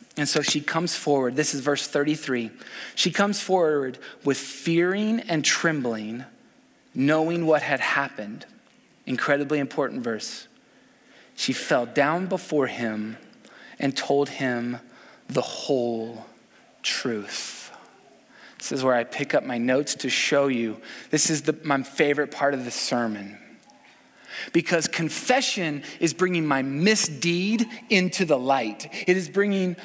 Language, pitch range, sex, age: English, 140-195 Hz, male, 20-39